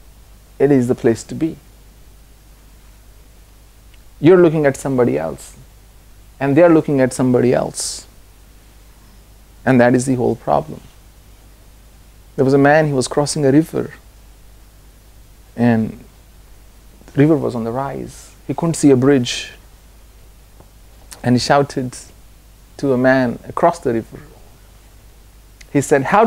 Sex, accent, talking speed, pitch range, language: male, Indian, 130 wpm, 95-140 Hz, English